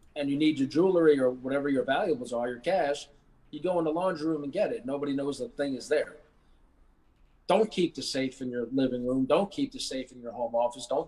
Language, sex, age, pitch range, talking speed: English, male, 40-59, 130-155 Hz, 240 wpm